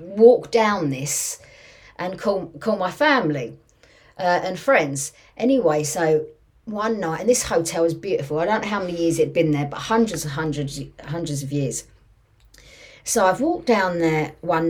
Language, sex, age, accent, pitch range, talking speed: English, female, 40-59, British, 165-245 Hz, 170 wpm